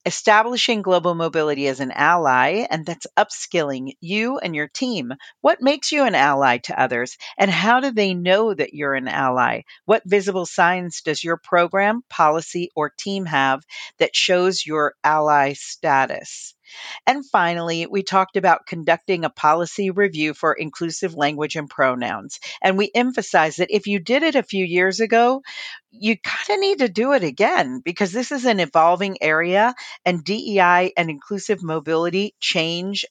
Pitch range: 155-215 Hz